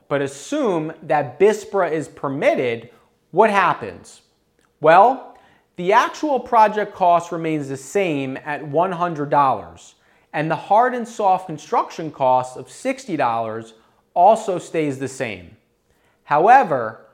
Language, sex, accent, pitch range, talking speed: English, male, American, 135-195 Hz, 110 wpm